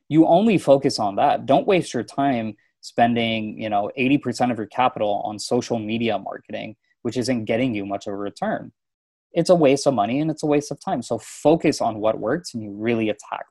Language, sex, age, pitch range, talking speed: English, male, 20-39, 110-135 Hz, 215 wpm